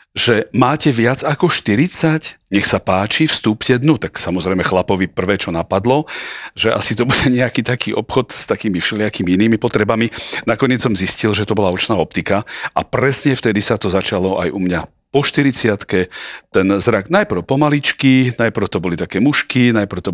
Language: Slovak